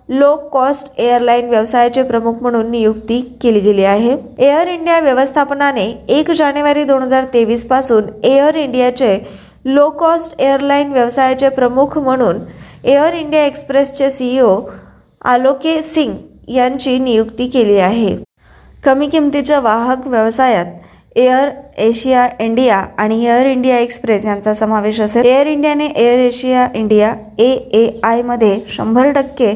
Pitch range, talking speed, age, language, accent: 225-270 Hz, 120 wpm, 20-39, Marathi, native